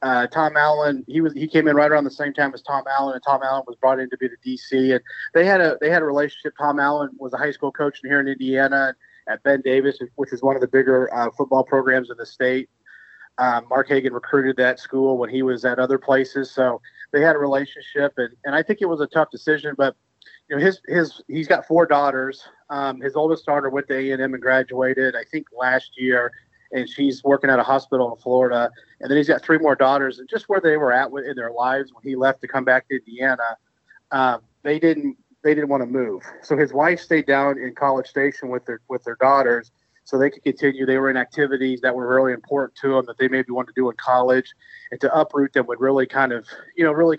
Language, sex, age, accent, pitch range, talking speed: English, male, 30-49, American, 130-145 Hz, 245 wpm